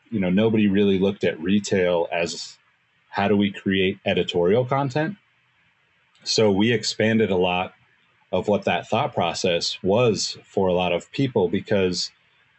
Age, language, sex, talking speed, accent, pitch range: 30-49, English, male, 150 wpm, American, 95-115 Hz